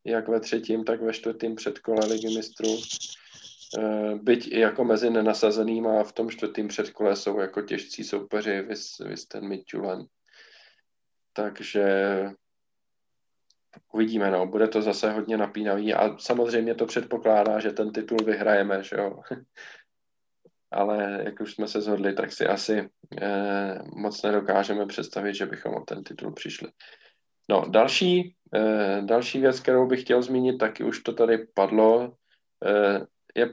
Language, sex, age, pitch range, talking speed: Czech, male, 20-39, 105-120 Hz, 140 wpm